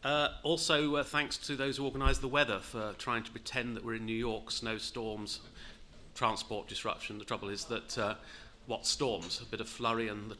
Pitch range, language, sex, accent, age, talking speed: 110-135 Hz, English, male, British, 40-59, 200 wpm